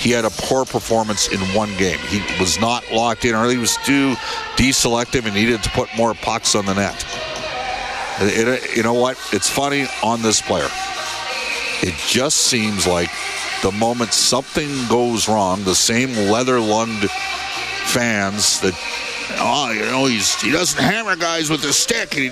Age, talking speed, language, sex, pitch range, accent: 50-69, 175 wpm, English, male, 100-130 Hz, American